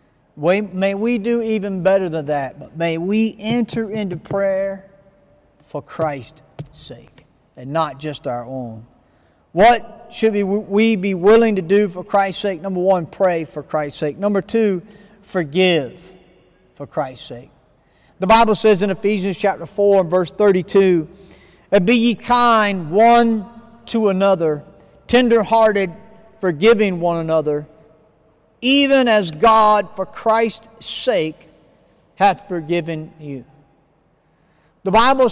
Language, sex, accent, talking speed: English, male, American, 135 wpm